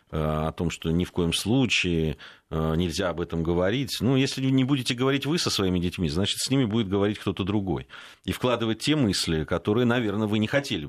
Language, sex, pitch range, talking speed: Russian, male, 85-120 Hz, 200 wpm